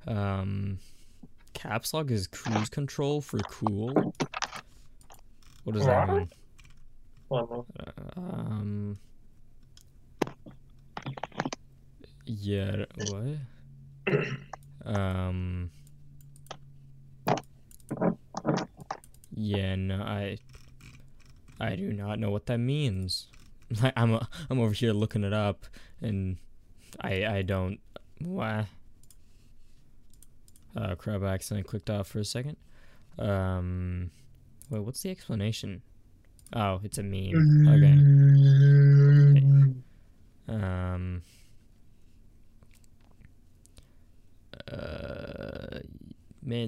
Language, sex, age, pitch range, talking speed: English, male, 20-39, 95-125 Hz, 80 wpm